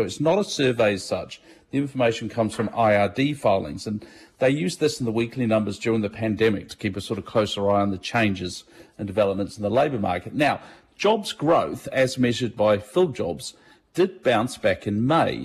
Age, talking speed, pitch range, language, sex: 50-69, 205 wpm, 110-130 Hz, English, male